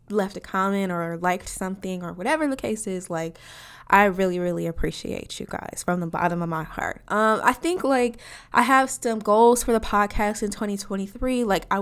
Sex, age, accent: female, 10-29, American